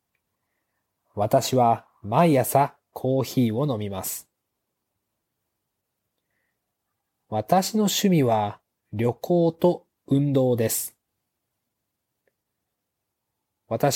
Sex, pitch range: male, 115-160 Hz